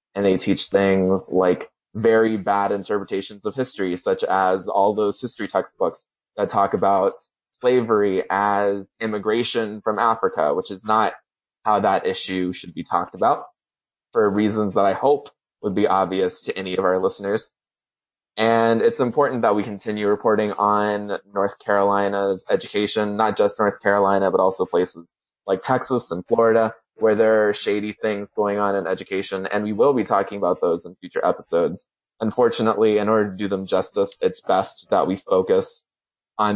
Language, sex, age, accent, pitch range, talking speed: English, male, 20-39, American, 95-110 Hz, 165 wpm